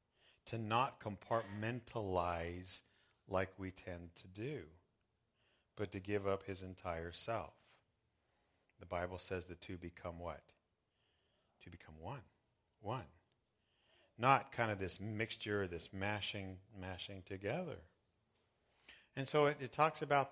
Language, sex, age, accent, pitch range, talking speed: English, male, 50-69, American, 95-125 Hz, 120 wpm